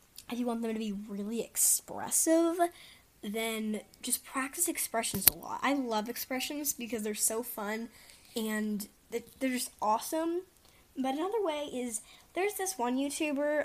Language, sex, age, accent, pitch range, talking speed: English, female, 10-29, American, 215-270 Hz, 145 wpm